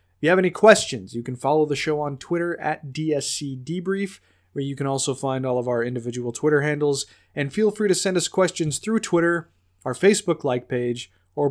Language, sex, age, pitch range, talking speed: English, male, 20-39, 120-155 Hz, 210 wpm